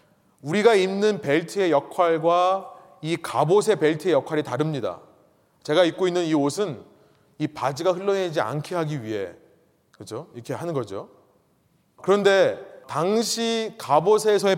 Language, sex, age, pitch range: Korean, male, 30-49, 150-195 Hz